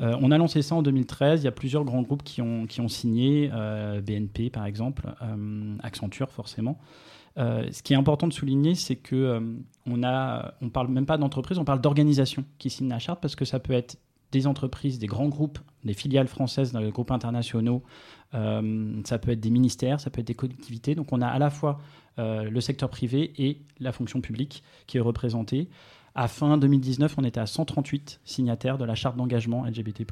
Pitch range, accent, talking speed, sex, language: 115-140 Hz, French, 210 wpm, male, French